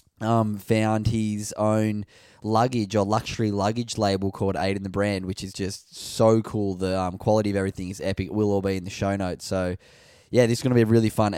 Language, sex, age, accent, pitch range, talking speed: English, male, 10-29, Australian, 95-115 Hz, 230 wpm